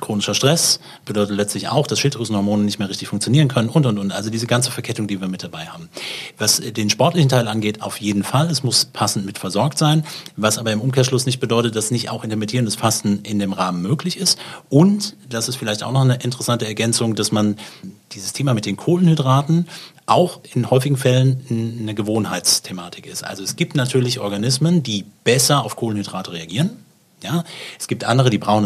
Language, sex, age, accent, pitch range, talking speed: German, male, 30-49, German, 105-145 Hz, 195 wpm